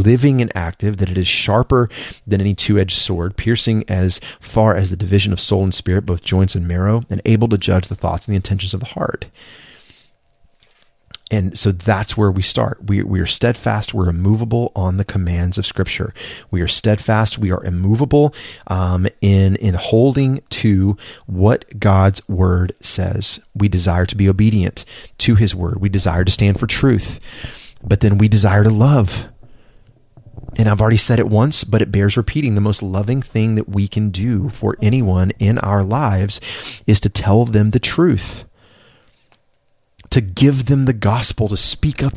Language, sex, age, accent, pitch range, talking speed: English, male, 30-49, American, 95-115 Hz, 180 wpm